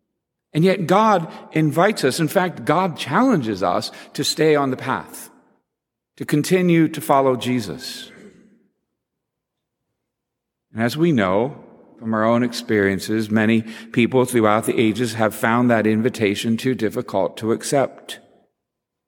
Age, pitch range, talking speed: 50-69, 105-135 Hz, 130 wpm